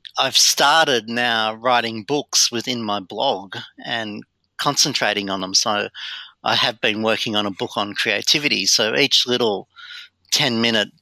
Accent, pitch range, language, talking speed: Australian, 105-125 Hz, English, 140 wpm